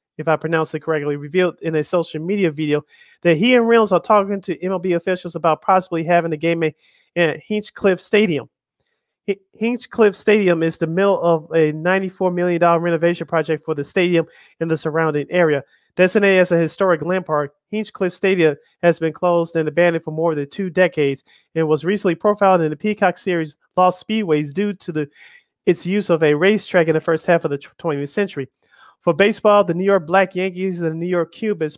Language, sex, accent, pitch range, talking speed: English, male, American, 160-185 Hz, 195 wpm